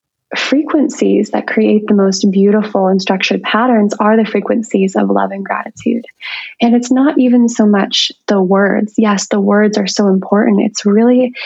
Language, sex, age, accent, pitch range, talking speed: English, female, 20-39, American, 195-235 Hz, 170 wpm